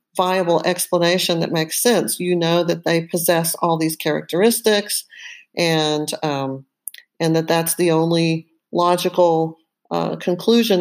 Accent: American